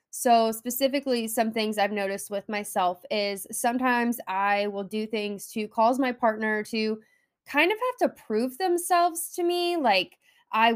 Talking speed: 160 wpm